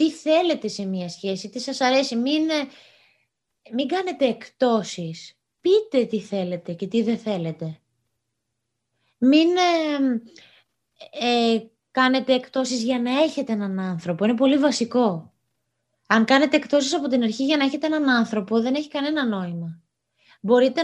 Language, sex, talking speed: Greek, female, 140 wpm